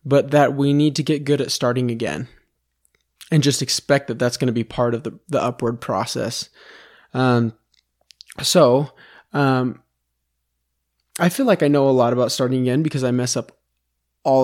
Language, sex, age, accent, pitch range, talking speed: English, male, 20-39, American, 120-145 Hz, 175 wpm